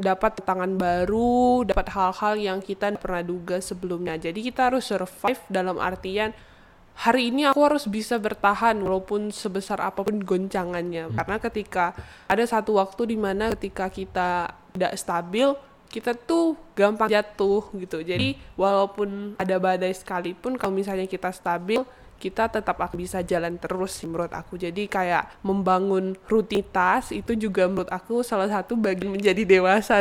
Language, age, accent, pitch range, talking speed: Indonesian, 10-29, native, 185-220 Hz, 140 wpm